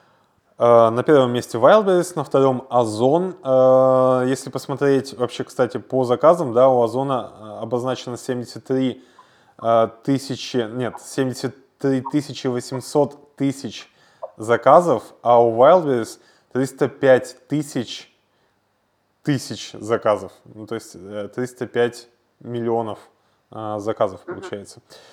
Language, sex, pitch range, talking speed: Russian, male, 115-135 Hz, 95 wpm